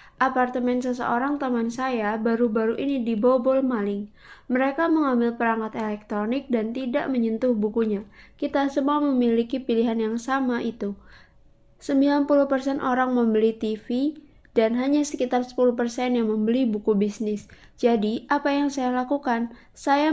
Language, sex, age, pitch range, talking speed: Indonesian, female, 20-39, 225-270 Hz, 120 wpm